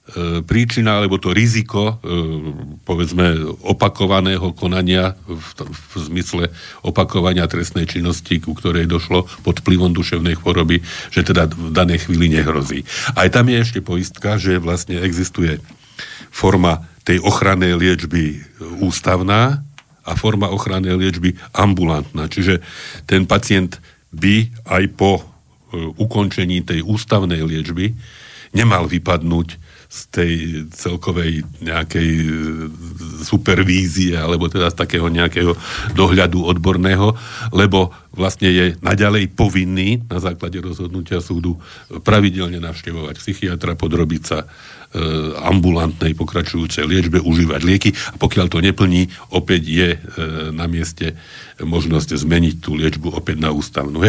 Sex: male